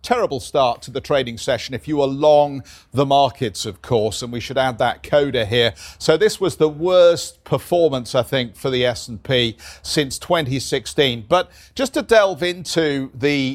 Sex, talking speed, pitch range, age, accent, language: male, 175 wpm, 130-165 Hz, 40-59, British, English